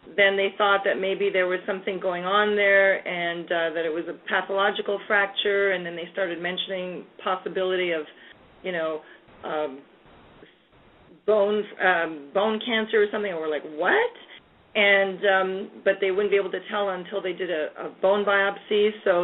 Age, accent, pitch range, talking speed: 40-59, American, 180-205 Hz, 175 wpm